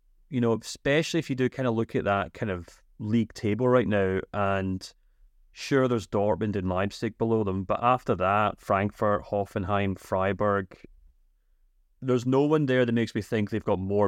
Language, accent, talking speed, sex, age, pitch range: English, British, 180 wpm, male, 30-49, 95-115 Hz